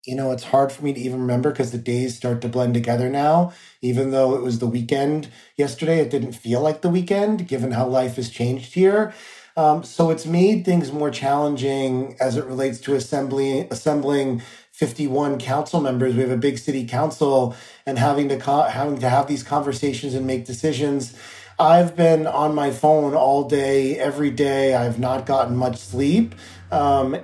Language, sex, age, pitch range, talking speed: English, male, 30-49, 130-155 Hz, 185 wpm